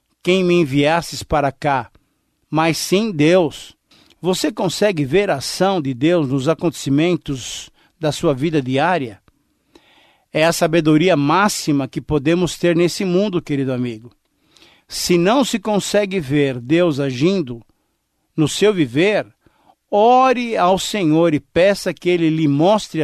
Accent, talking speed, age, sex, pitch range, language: Brazilian, 135 wpm, 50-69, male, 150-195 Hz, Portuguese